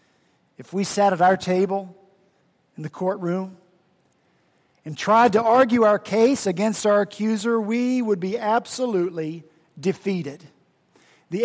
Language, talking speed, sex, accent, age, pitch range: English, 125 wpm, male, American, 50-69, 180-235 Hz